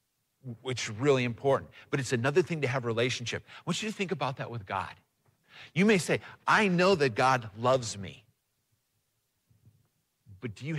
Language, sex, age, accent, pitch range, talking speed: English, male, 50-69, American, 120-155 Hz, 180 wpm